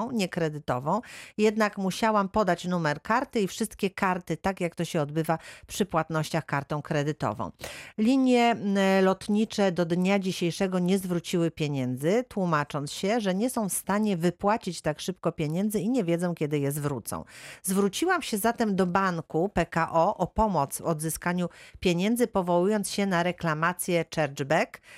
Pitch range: 155-210 Hz